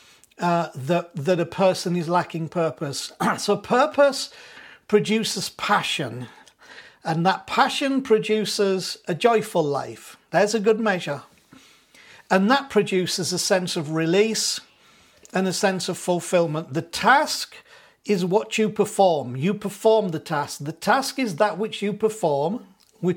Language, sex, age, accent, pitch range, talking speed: English, male, 50-69, British, 170-215 Hz, 135 wpm